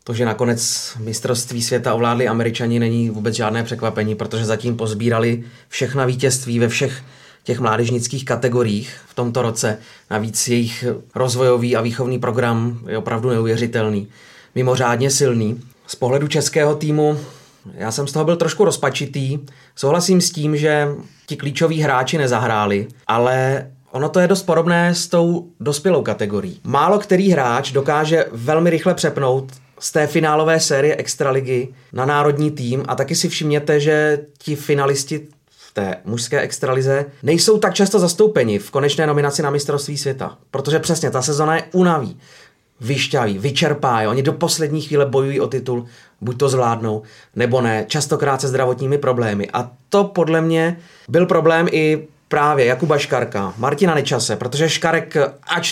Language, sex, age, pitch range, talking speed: Czech, male, 30-49, 120-150 Hz, 150 wpm